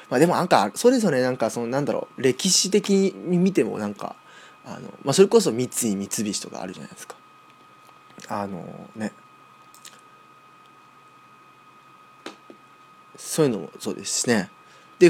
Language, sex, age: Japanese, male, 20-39